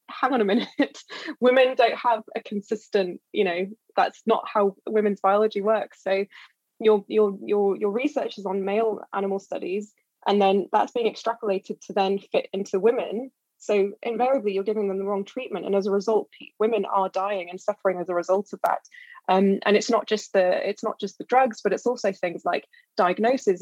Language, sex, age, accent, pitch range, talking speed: English, female, 20-39, British, 195-220 Hz, 195 wpm